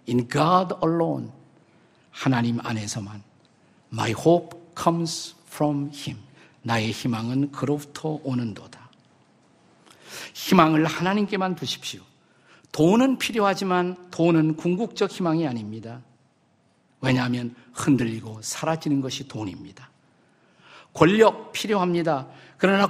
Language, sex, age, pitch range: Korean, male, 50-69, 130-180 Hz